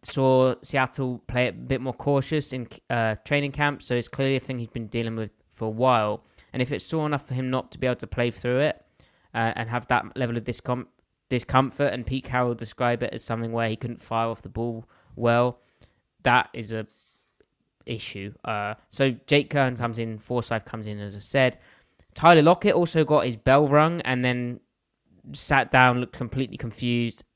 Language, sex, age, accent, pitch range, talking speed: English, male, 20-39, British, 110-130 Hz, 200 wpm